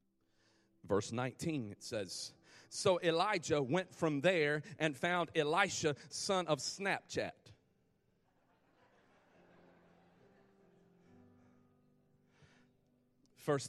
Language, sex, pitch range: English, male, 105-160 Hz